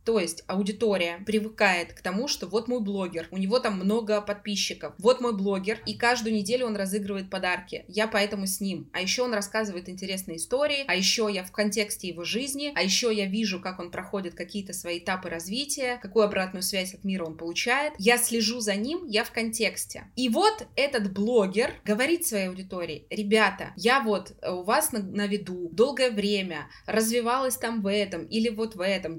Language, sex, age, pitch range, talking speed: Russian, female, 20-39, 190-235 Hz, 185 wpm